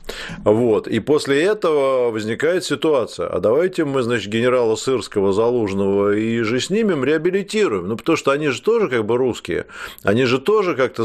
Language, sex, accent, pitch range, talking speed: Russian, male, native, 100-130 Hz, 160 wpm